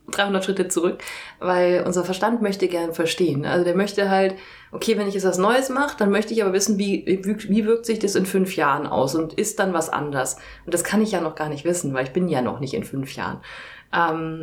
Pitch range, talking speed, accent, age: 160-190 Hz, 235 wpm, German, 30-49